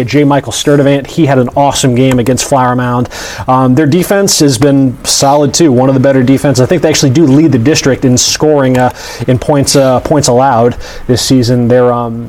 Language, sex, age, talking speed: English, male, 30-49, 210 wpm